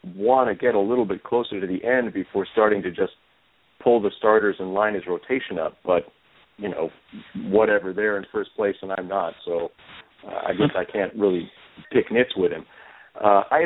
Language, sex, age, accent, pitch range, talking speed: English, male, 50-69, American, 100-135 Hz, 200 wpm